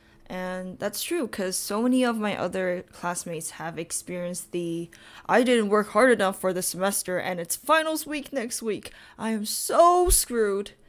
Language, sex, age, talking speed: English, female, 10-29, 170 wpm